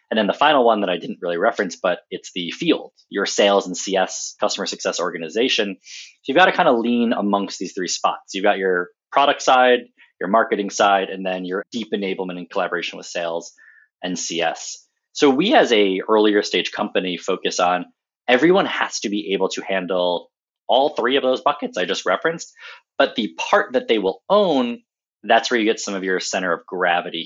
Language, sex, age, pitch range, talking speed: English, male, 20-39, 95-140 Hz, 205 wpm